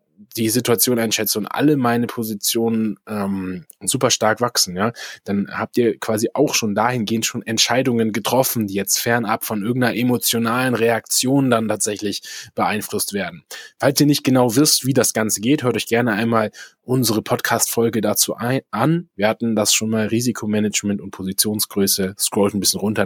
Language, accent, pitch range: German, German, 105-120 Hz